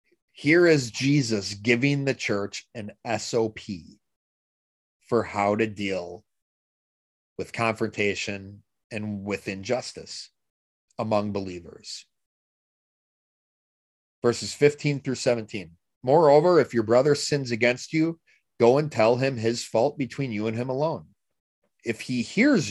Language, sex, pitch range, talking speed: English, male, 105-145 Hz, 115 wpm